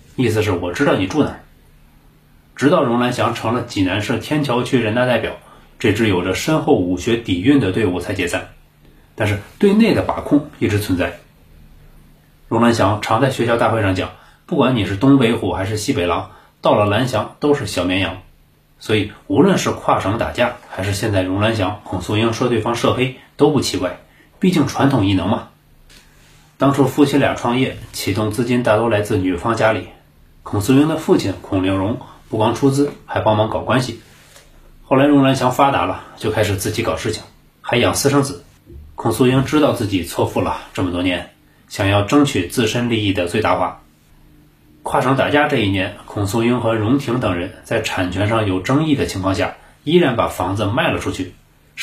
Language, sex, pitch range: Chinese, male, 95-130 Hz